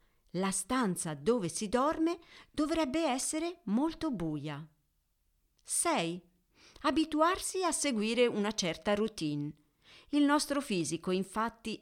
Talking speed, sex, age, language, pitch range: 100 wpm, female, 50-69, Italian, 165-265 Hz